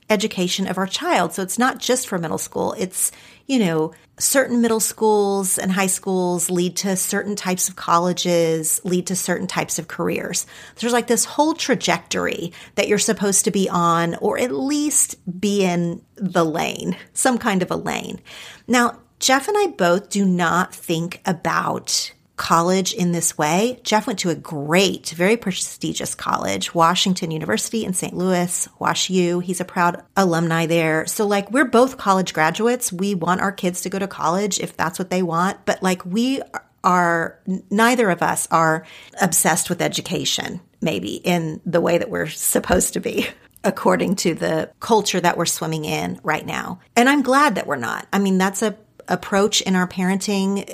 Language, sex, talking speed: English, female, 180 wpm